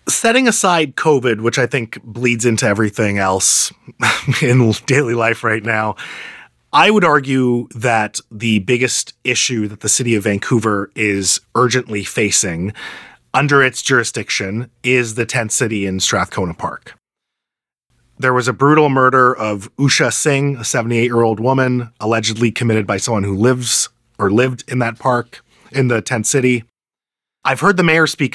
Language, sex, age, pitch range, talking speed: English, male, 30-49, 110-135 Hz, 150 wpm